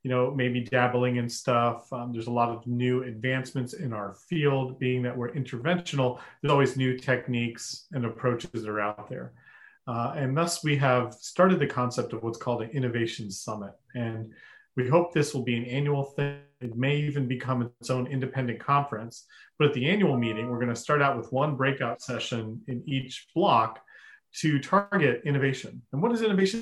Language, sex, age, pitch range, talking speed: English, male, 40-59, 120-140 Hz, 190 wpm